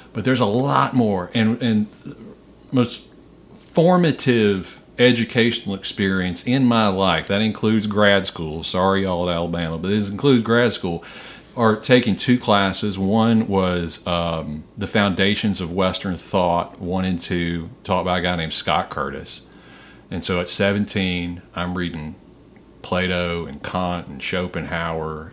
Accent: American